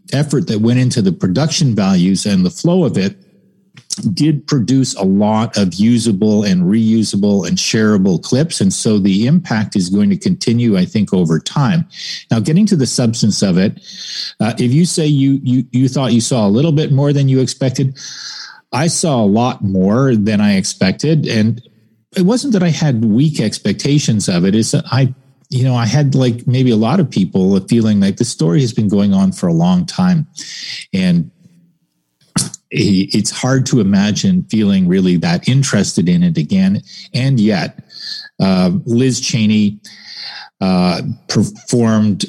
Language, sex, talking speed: English, male, 175 wpm